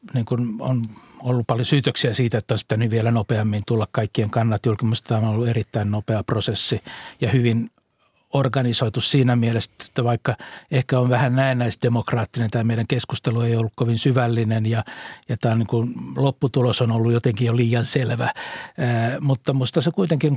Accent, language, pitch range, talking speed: native, Finnish, 115-135 Hz, 165 wpm